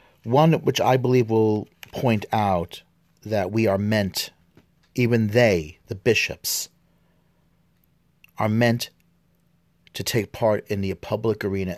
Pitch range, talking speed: 100-130 Hz, 120 wpm